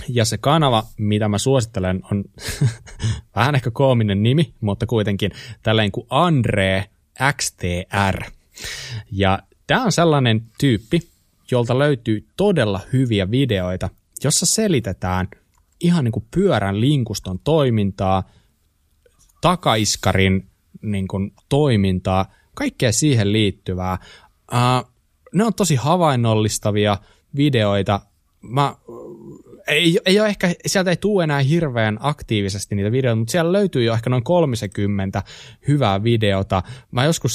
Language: Finnish